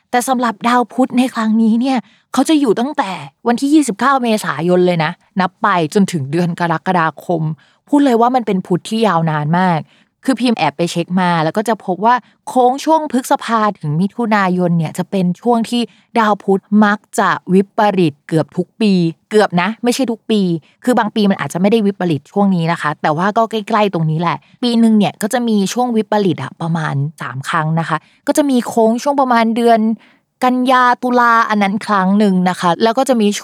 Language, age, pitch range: Thai, 20-39, 170-230 Hz